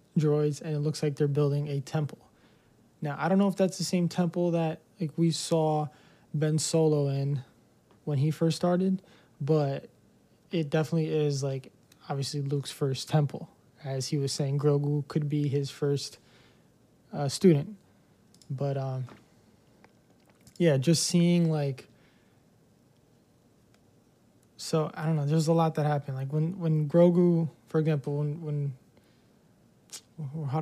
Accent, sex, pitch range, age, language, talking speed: American, male, 140-160 Hz, 20-39, English, 145 wpm